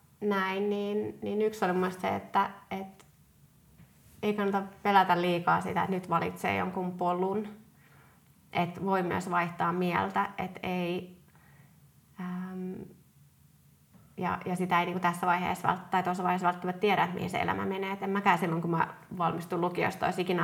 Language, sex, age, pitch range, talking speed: Finnish, female, 30-49, 175-200 Hz, 160 wpm